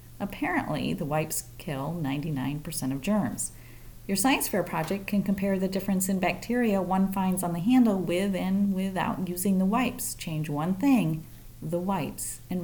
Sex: female